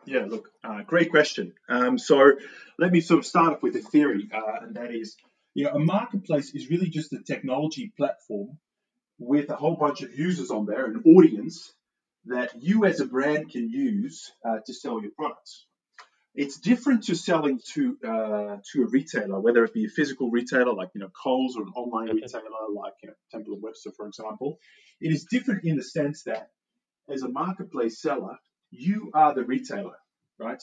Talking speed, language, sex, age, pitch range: 195 wpm, English, male, 30-49, 125-195 Hz